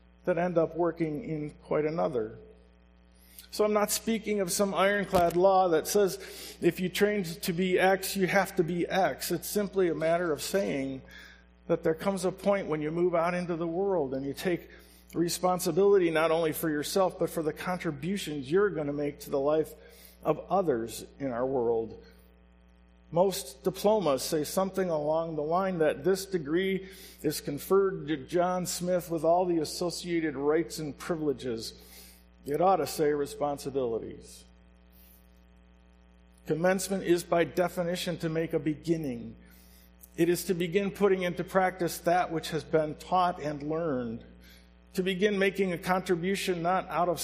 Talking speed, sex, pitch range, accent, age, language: 160 wpm, male, 140-185 Hz, American, 50-69, English